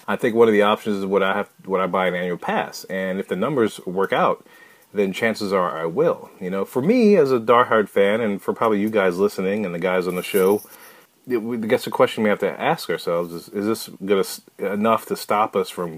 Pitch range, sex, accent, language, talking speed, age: 95-120 Hz, male, American, English, 250 wpm, 30-49